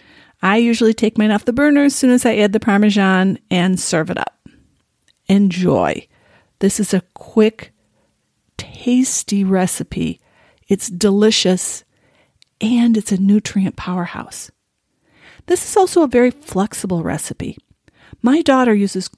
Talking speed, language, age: 130 wpm, English, 40-59